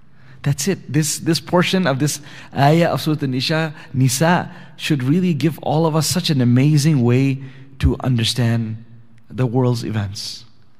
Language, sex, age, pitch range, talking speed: English, male, 30-49, 120-145 Hz, 150 wpm